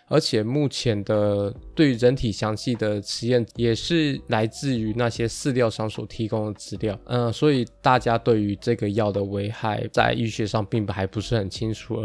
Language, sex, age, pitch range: Chinese, male, 20-39, 110-130 Hz